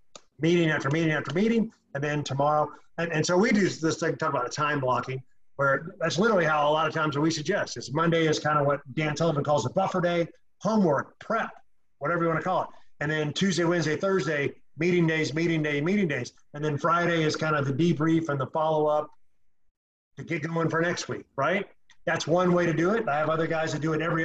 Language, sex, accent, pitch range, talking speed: English, male, American, 145-175 Hz, 230 wpm